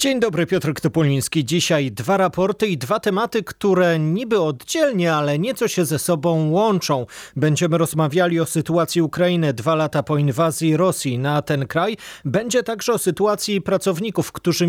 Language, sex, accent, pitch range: Polish, male, native, 145-185 Hz